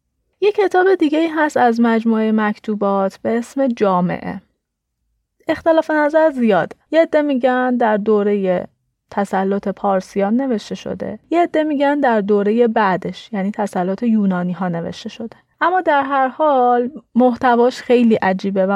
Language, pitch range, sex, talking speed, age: Persian, 200-260 Hz, female, 140 wpm, 30-49